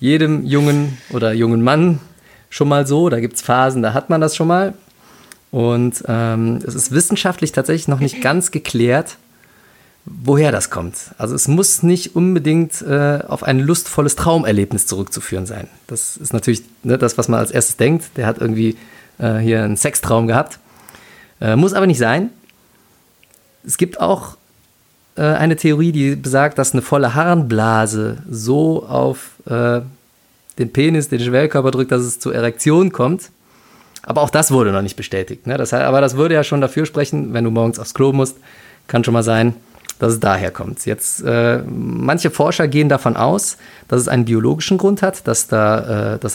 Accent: German